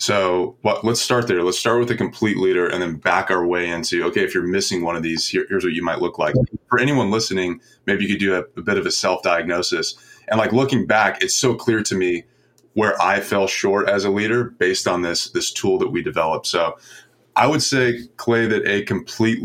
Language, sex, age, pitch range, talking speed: English, male, 20-39, 95-120 Hz, 230 wpm